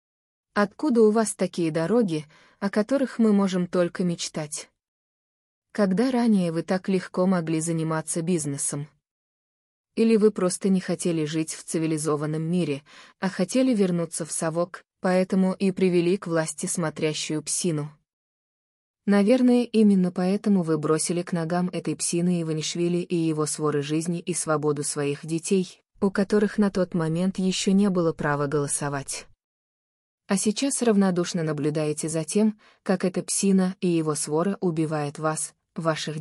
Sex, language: female, Ukrainian